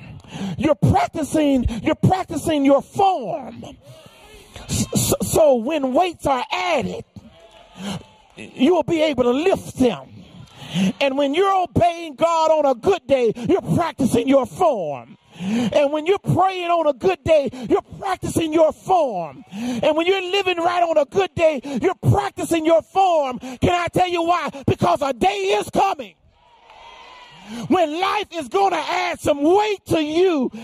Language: English